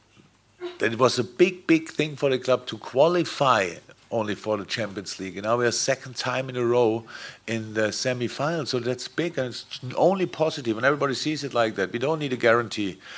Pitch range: 85-125 Hz